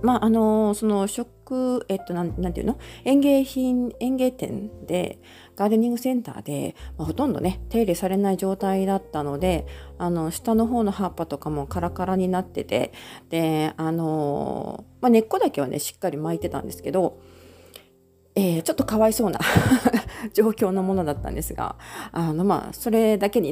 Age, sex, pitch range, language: 40-59, female, 160-215 Hz, Japanese